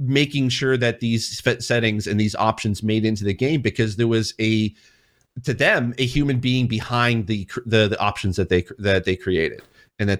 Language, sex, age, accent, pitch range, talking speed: English, male, 30-49, American, 100-120 Hz, 195 wpm